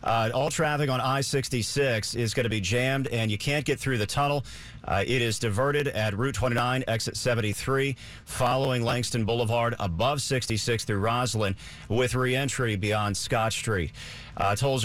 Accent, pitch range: American, 105-125 Hz